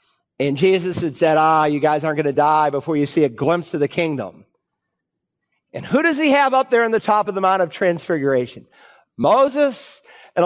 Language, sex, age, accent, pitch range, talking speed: English, male, 50-69, American, 170-220 Hz, 205 wpm